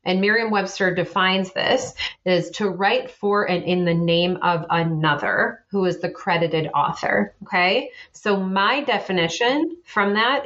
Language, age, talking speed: English, 30-49, 145 wpm